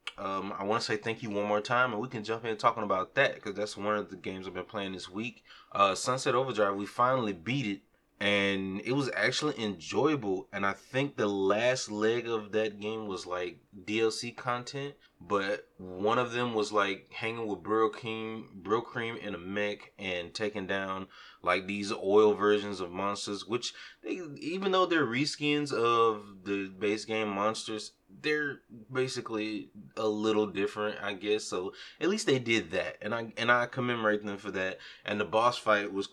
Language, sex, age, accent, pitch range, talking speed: English, male, 20-39, American, 100-115 Hz, 190 wpm